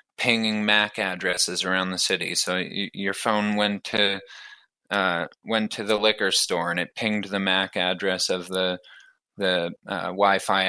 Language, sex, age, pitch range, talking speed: English, male, 20-39, 90-105 Hz, 165 wpm